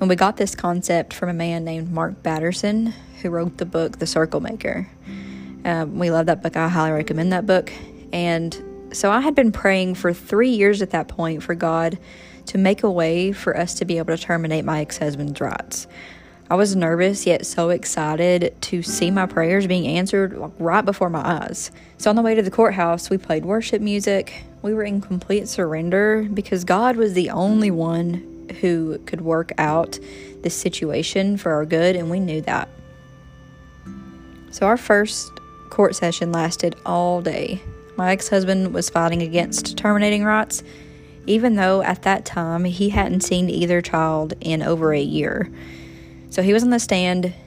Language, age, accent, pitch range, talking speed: English, 30-49, American, 160-195 Hz, 180 wpm